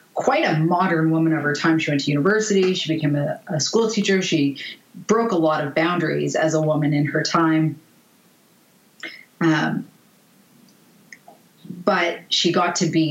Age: 30-49